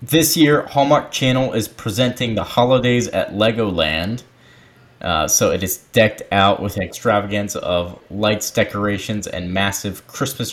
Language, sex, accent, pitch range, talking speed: English, male, American, 95-120 Hz, 135 wpm